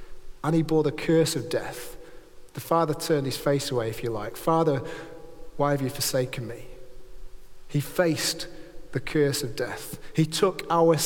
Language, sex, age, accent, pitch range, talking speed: English, male, 40-59, British, 145-190 Hz, 170 wpm